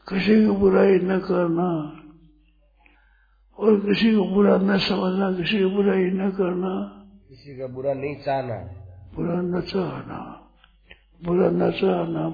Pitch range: 160-215 Hz